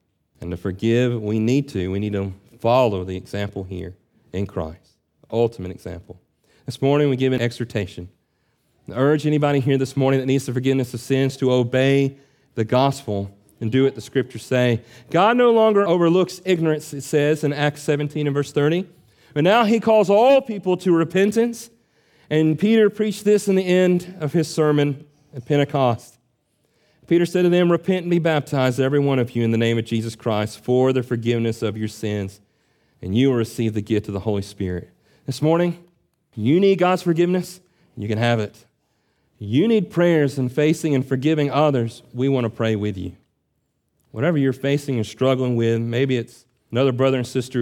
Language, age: English, 40-59